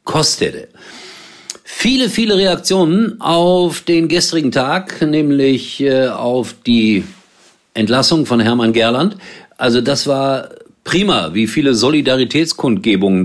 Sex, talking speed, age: male, 100 wpm, 50-69